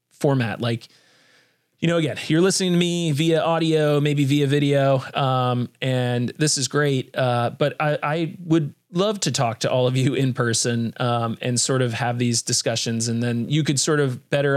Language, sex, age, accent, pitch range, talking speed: English, male, 30-49, American, 115-145 Hz, 195 wpm